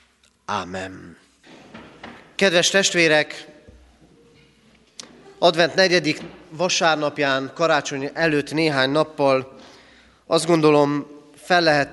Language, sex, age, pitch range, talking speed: Hungarian, male, 30-49, 115-150 Hz, 65 wpm